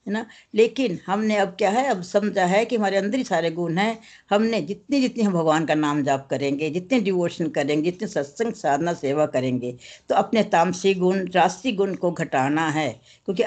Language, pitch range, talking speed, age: Hindi, 160-215 Hz, 195 wpm, 60-79